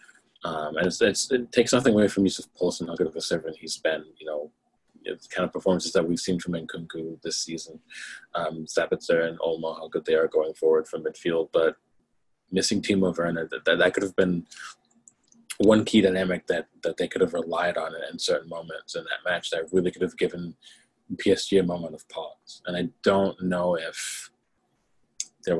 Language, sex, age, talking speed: English, male, 30-49, 200 wpm